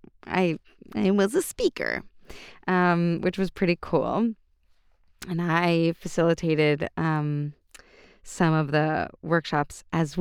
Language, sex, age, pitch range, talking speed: English, female, 20-39, 150-190 Hz, 110 wpm